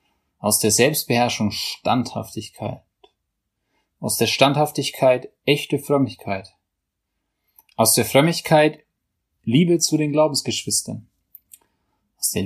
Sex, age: male, 30-49